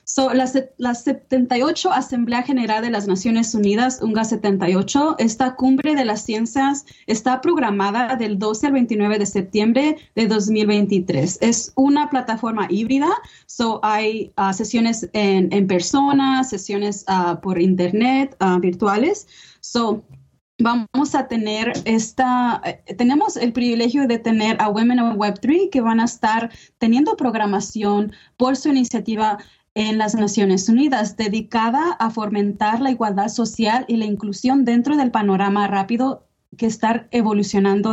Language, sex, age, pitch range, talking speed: English, female, 20-39, 205-250 Hz, 140 wpm